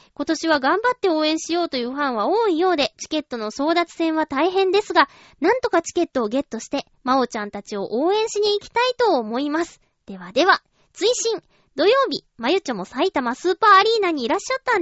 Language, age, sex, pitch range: Japanese, 20-39, female, 245-355 Hz